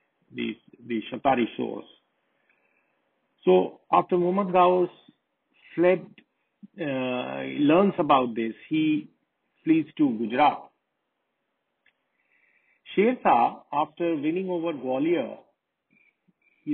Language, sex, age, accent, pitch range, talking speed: English, male, 50-69, Indian, 135-190 Hz, 80 wpm